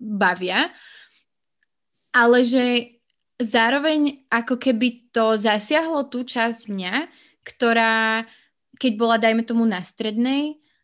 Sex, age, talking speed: female, 20-39, 100 wpm